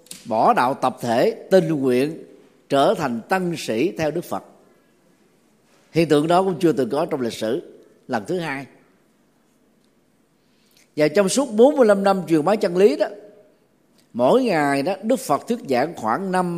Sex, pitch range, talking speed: male, 135-205 Hz, 165 wpm